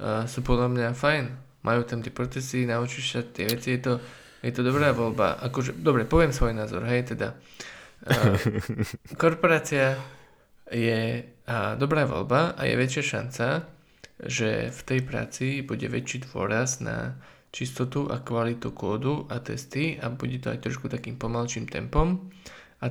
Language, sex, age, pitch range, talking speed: Slovak, male, 20-39, 115-135 Hz, 155 wpm